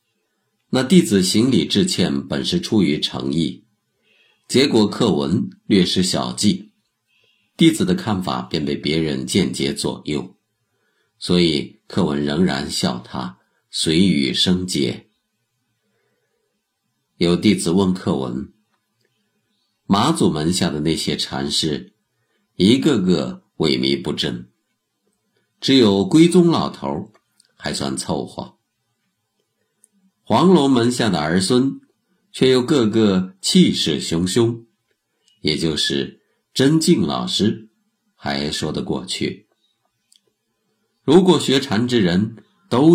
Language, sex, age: Chinese, male, 50-69